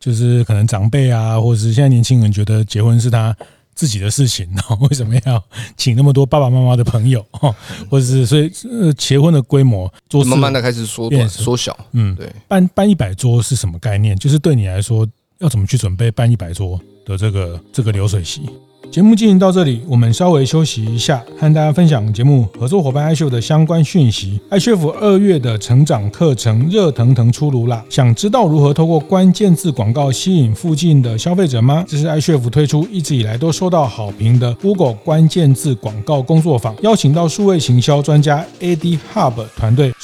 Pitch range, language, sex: 115-155 Hz, Chinese, male